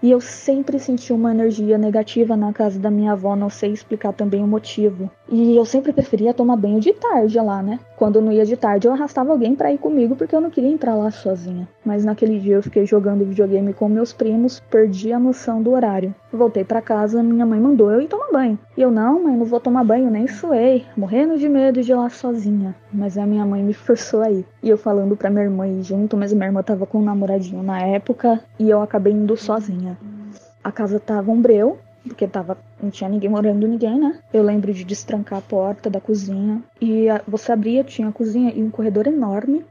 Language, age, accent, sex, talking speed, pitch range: Portuguese, 20-39, Brazilian, female, 225 wpm, 205-240 Hz